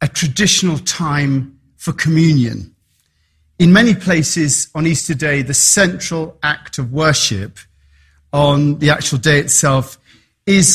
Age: 40-59